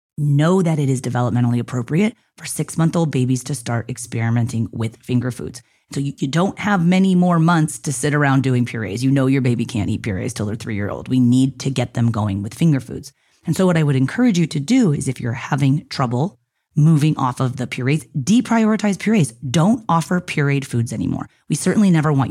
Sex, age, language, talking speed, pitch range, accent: female, 30-49, English, 205 wpm, 125-170 Hz, American